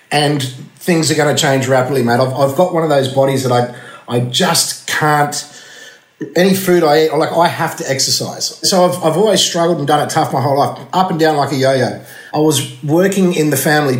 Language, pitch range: English, 130-155 Hz